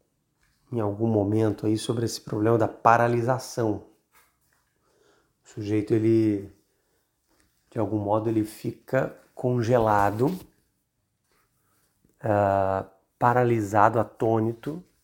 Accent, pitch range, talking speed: Brazilian, 105-130 Hz, 85 wpm